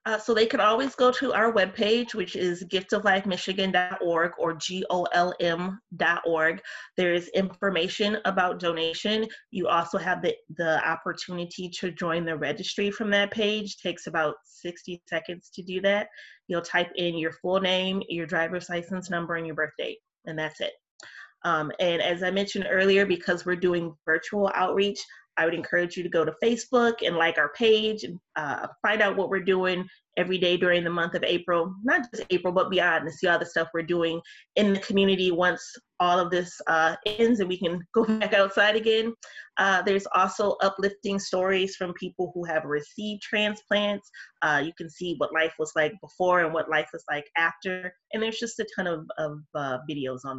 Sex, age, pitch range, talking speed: female, 30-49, 170-200 Hz, 185 wpm